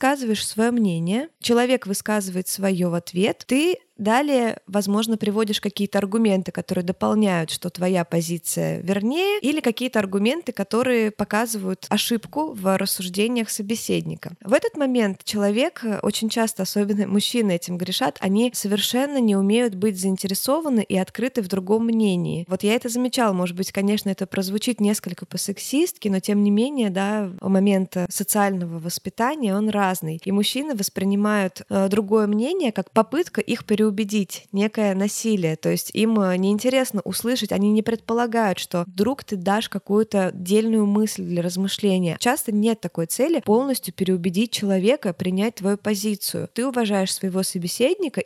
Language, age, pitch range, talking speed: Russian, 20-39, 190-225 Hz, 145 wpm